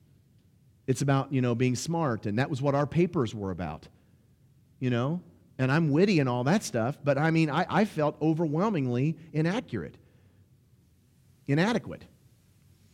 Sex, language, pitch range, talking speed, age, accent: male, English, 125-185 Hz, 150 wpm, 40-59, American